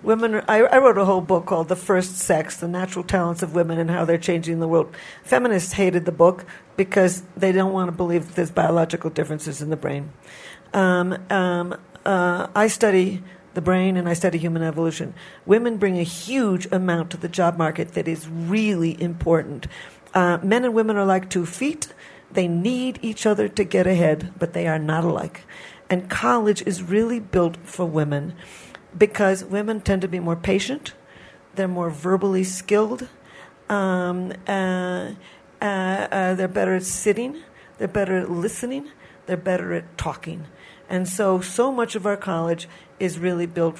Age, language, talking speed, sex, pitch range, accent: 50-69, English, 175 wpm, female, 175-200 Hz, American